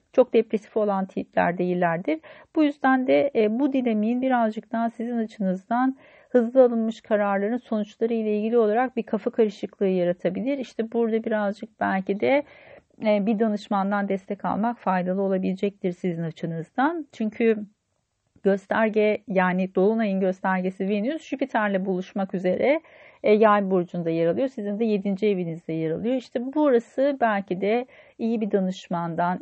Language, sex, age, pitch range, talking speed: Turkish, female, 40-59, 185-240 Hz, 130 wpm